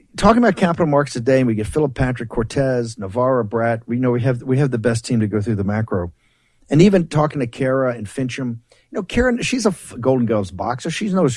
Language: English